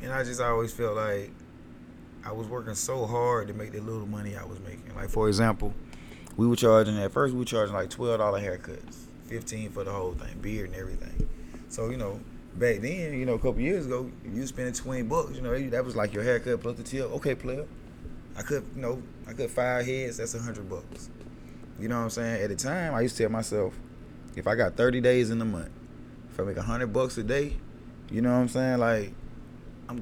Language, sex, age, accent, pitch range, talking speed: English, male, 20-39, American, 100-125 Hz, 230 wpm